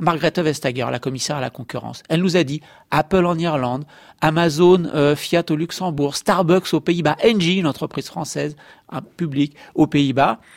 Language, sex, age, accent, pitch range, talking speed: French, male, 40-59, French, 140-180 Hz, 175 wpm